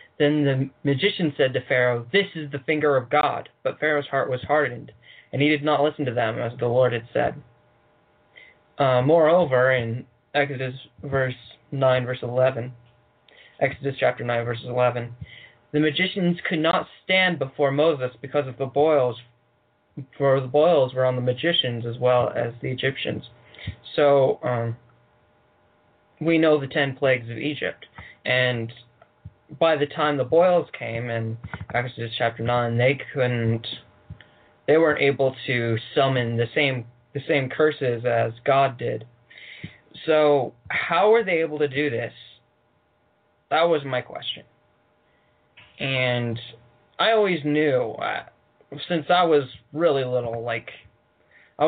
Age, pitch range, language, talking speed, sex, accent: 20-39, 120-150 Hz, English, 145 wpm, male, American